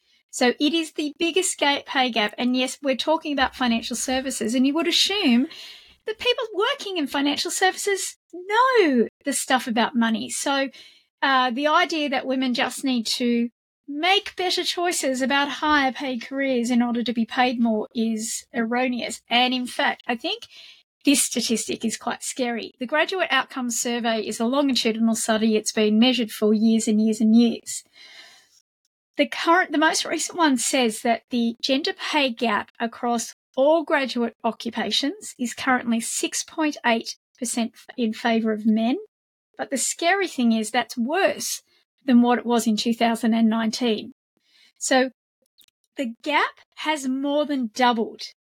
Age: 40-59